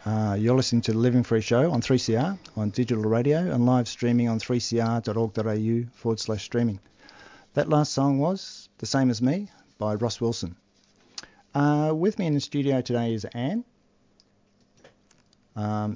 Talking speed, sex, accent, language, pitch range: 160 wpm, male, Australian, English, 110-130 Hz